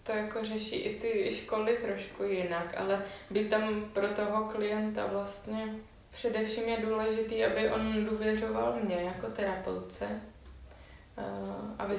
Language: Slovak